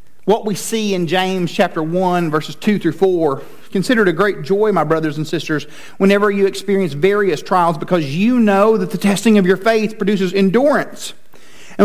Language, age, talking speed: English, 40-59, 185 wpm